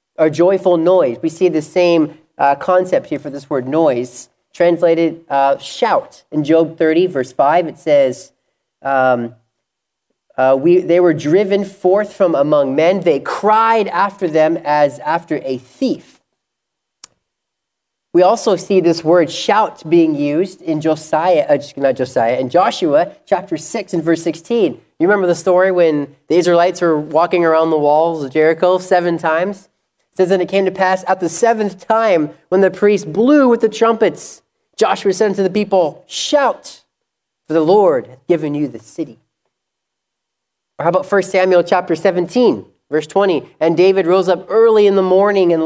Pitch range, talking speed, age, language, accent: 155-195 Hz, 170 wpm, 30-49, English, American